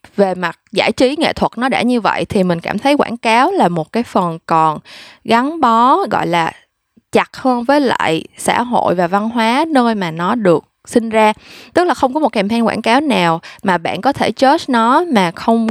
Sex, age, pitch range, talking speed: female, 20-39, 180-255 Hz, 220 wpm